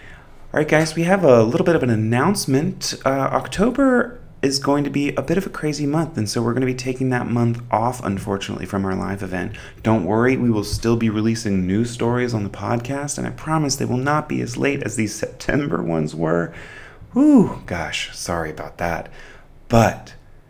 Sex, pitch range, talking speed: male, 95-120 Hz, 205 wpm